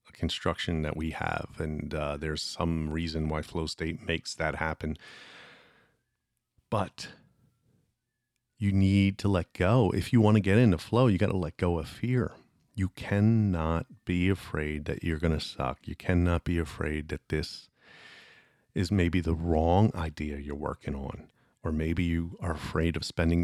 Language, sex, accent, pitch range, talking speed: English, male, American, 80-100 Hz, 165 wpm